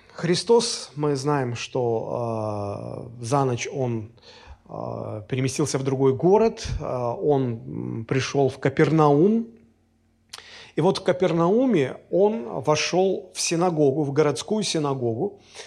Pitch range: 135-185 Hz